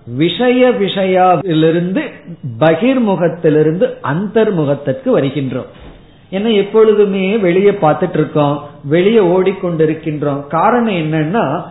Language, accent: Tamil, native